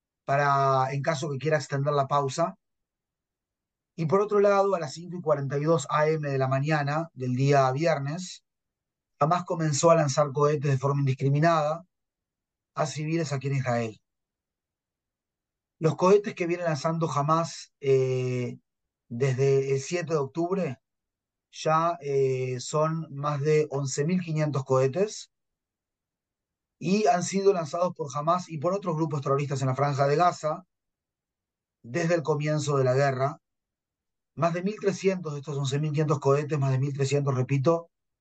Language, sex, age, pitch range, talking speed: Spanish, male, 30-49, 140-170 Hz, 130 wpm